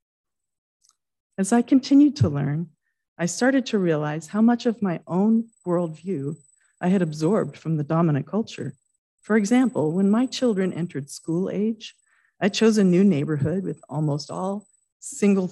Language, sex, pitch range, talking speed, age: English, female, 145-195 Hz, 150 wpm, 40-59